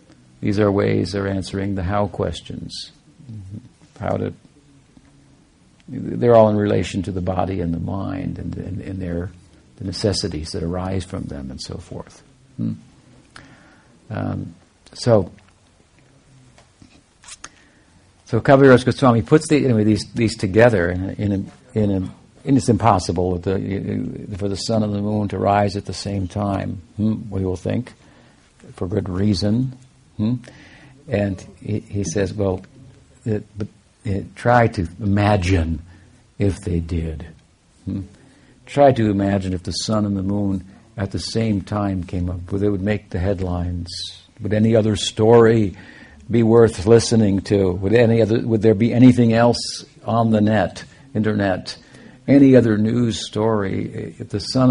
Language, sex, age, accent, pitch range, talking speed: English, male, 60-79, American, 95-115 Hz, 150 wpm